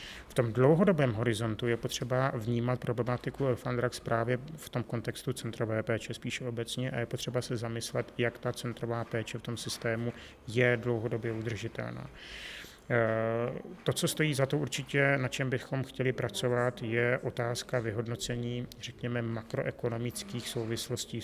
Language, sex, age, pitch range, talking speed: Czech, male, 30-49, 115-125 Hz, 140 wpm